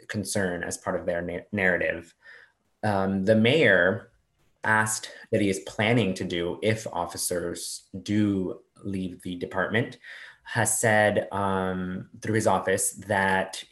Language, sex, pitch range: English, male, 90-110 Hz